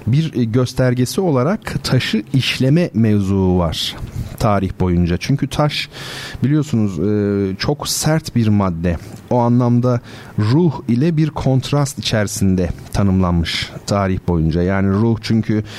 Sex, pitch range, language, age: male, 105-130 Hz, Turkish, 40-59